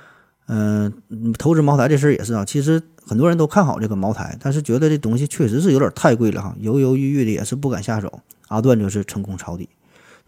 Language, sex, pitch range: Chinese, male, 110-135 Hz